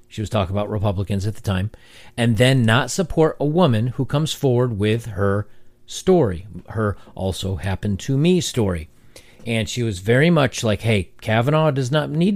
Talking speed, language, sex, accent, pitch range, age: 180 wpm, English, male, American, 105-135 Hz, 40-59